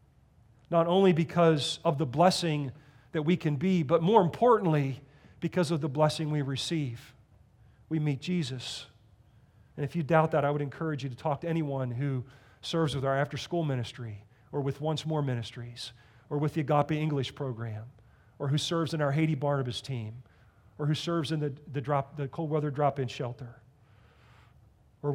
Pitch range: 120-160 Hz